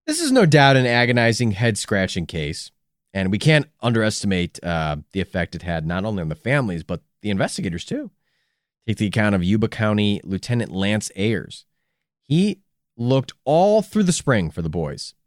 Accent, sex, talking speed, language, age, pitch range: American, male, 175 wpm, English, 30-49, 95-145 Hz